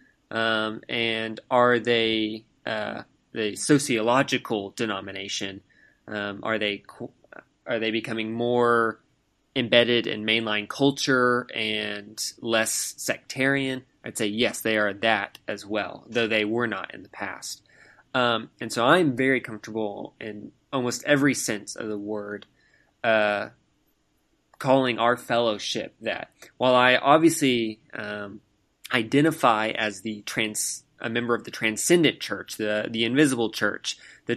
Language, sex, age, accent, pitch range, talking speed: English, male, 20-39, American, 105-120 Hz, 130 wpm